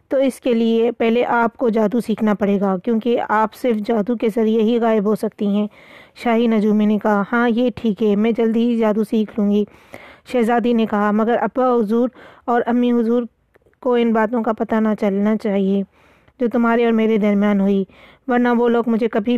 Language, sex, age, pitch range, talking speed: Urdu, female, 20-39, 215-235 Hz, 200 wpm